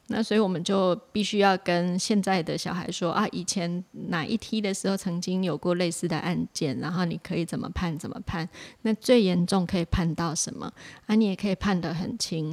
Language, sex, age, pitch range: Chinese, female, 20-39, 170-205 Hz